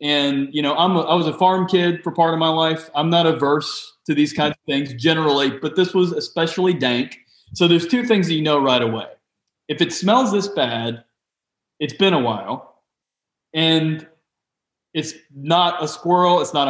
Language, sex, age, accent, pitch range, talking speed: English, male, 30-49, American, 145-185 Hz, 195 wpm